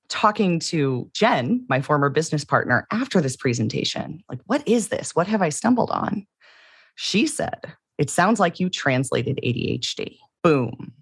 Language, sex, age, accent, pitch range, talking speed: English, female, 30-49, American, 130-180 Hz, 150 wpm